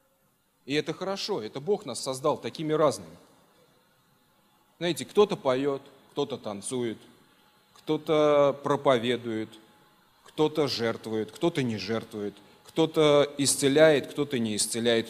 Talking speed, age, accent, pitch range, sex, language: 105 wpm, 20-39, native, 140-200 Hz, male, Russian